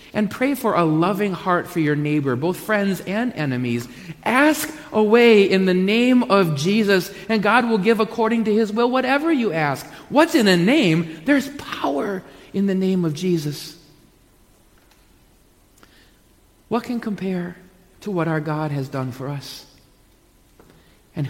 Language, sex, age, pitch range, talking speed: English, male, 40-59, 140-190 Hz, 150 wpm